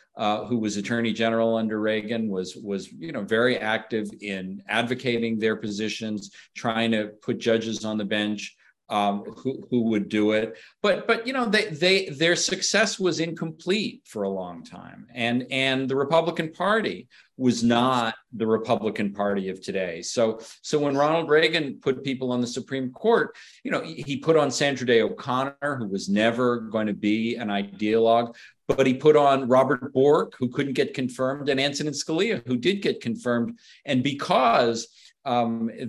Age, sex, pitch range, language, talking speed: 50-69, male, 110-150 Hz, English, 175 wpm